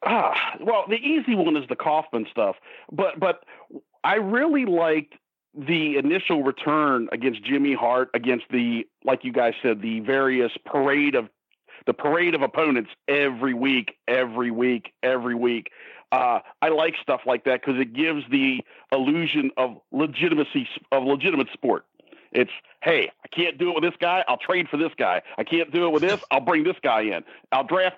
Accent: American